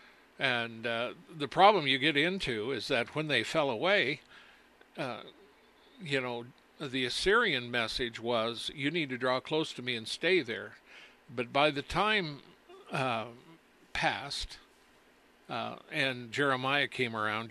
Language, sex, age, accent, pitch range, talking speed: English, male, 60-79, American, 120-150 Hz, 140 wpm